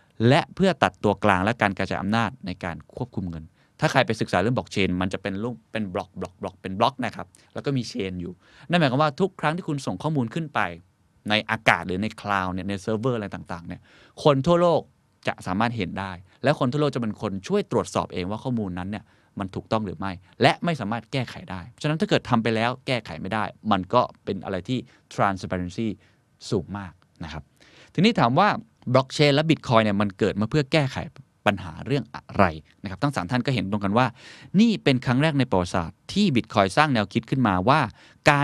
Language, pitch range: Thai, 95-135 Hz